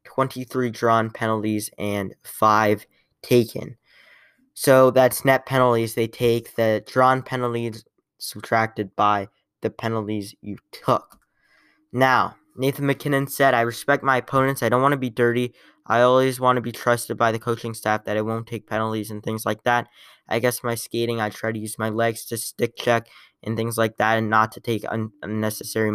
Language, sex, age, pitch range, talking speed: English, male, 10-29, 110-125 Hz, 175 wpm